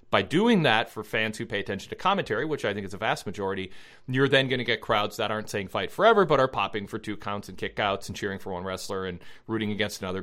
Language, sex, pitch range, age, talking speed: English, male, 100-135 Hz, 40-59, 265 wpm